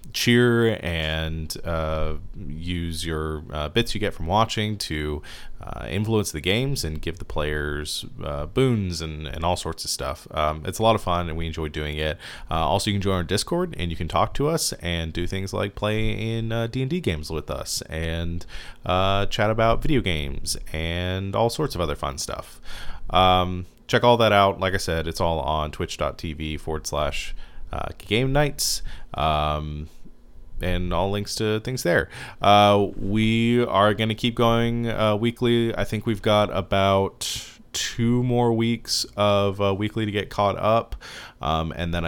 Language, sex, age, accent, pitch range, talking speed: English, male, 30-49, American, 80-110 Hz, 185 wpm